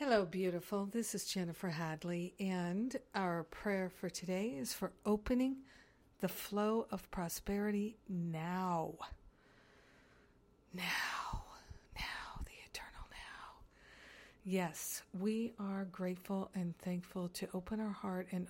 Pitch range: 175-200 Hz